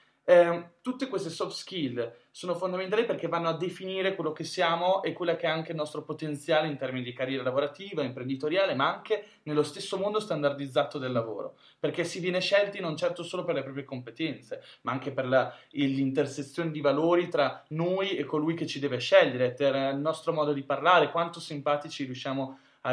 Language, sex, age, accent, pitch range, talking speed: Italian, male, 20-39, native, 145-180 Hz, 190 wpm